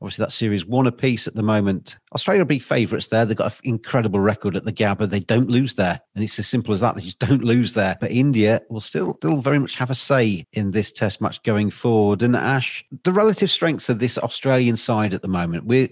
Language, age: English, 40-59